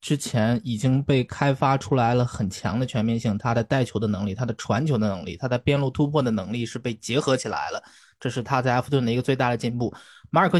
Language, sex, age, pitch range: Chinese, male, 20-39, 115-145 Hz